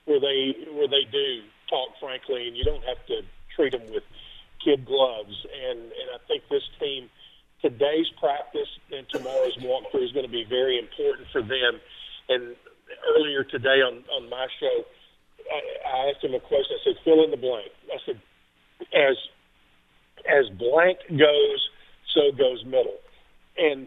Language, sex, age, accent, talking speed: English, male, 50-69, American, 165 wpm